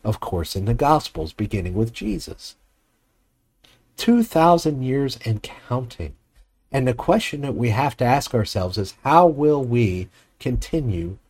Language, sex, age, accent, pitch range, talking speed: English, male, 50-69, American, 105-150 Hz, 140 wpm